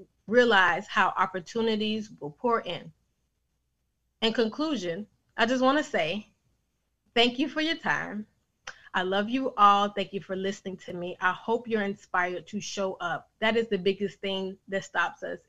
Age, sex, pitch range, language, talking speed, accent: 20-39, female, 190-230 Hz, English, 165 wpm, American